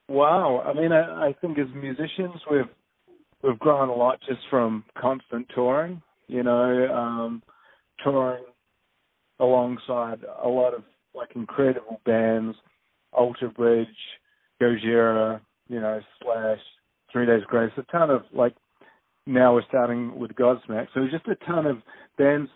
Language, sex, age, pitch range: English, male, 40-59, 120-140 Hz